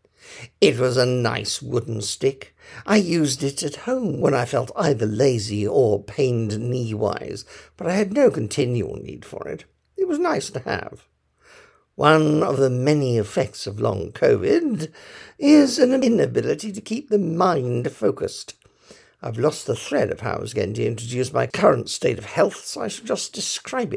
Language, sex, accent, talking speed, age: English, male, British, 175 wpm, 60-79